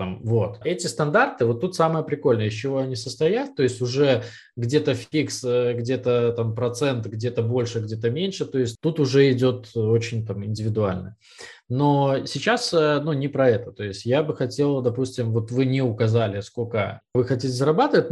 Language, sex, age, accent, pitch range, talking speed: Russian, male, 20-39, native, 115-150 Hz, 170 wpm